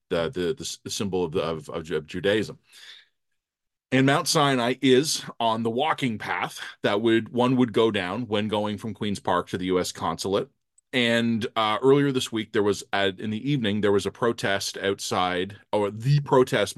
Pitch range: 100-135 Hz